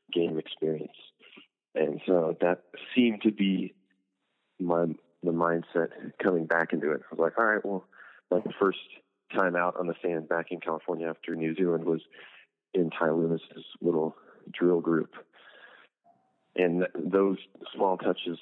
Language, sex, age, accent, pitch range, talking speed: English, male, 30-49, American, 80-90 Hz, 145 wpm